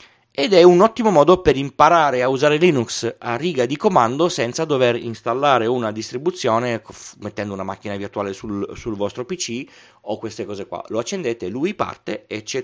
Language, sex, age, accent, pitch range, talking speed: Italian, male, 30-49, native, 110-150 Hz, 175 wpm